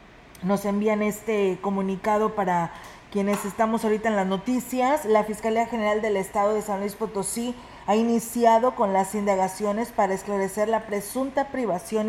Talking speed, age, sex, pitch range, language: 150 wpm, 40-59, female, 200-220 Hz, Spanish